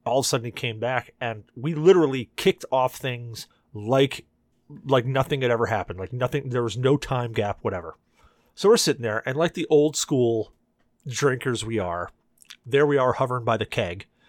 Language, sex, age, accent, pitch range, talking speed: English, male, 30-49, American, 115-145 Hz, 195 wpm